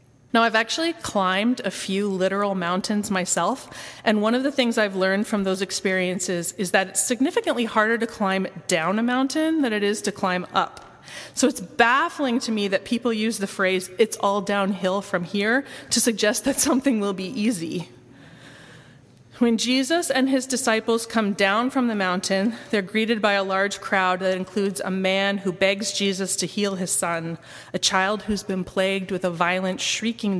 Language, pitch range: English, 185-225 Hz